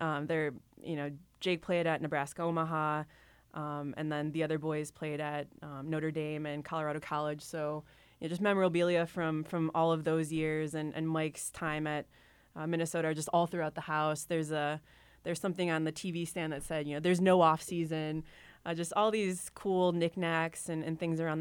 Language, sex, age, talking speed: English, female, 20-39, 205 wpm